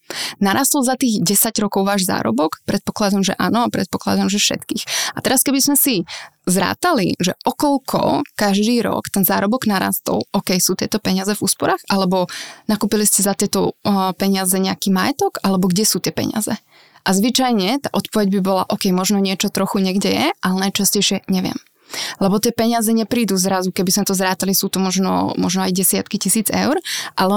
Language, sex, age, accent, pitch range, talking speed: Czech, female, 20-39, native, 190-225 Hz, 175 wpm